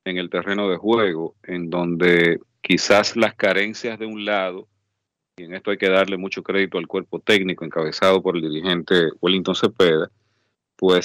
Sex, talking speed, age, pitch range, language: male, 170 wpm, 40-59, 90-105 Hz, Spanish